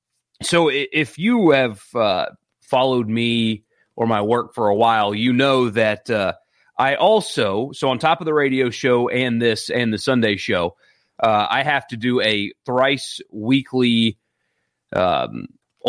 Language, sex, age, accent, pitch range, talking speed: English, male, 30-49, American, 110-135 Hz, 155 wpm